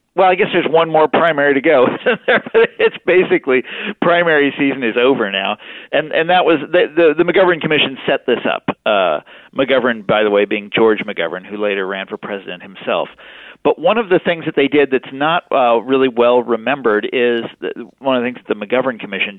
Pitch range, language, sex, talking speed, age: 110-155 Hz, English, male, 205 wpm, 40-59